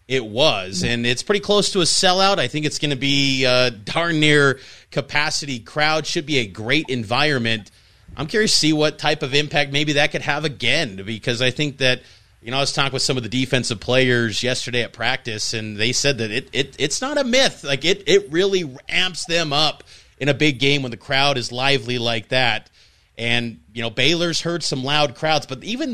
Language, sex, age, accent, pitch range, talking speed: English, male, 30-49, American, 130-200 Hz, 215 wpm